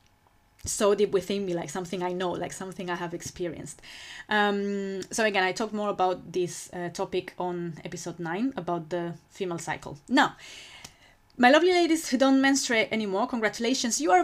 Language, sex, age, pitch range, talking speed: English, female, 20-39, 180-230 Hz, 175 wpm